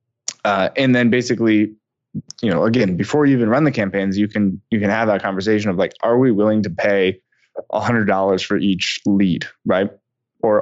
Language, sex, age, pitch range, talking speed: English, male, 20-39, 100-120 Hz, 200 wpm